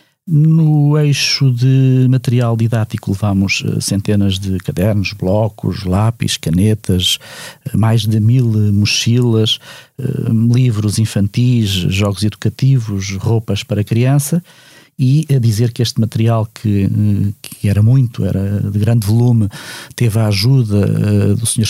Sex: male